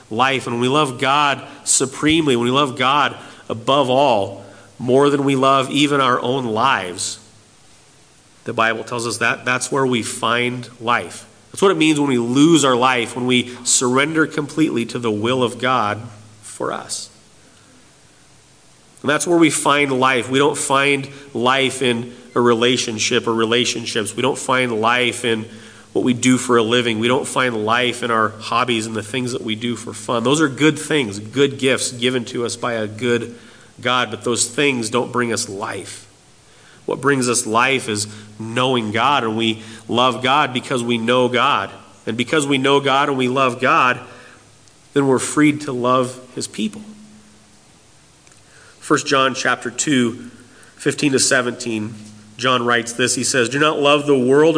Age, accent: 40-59, American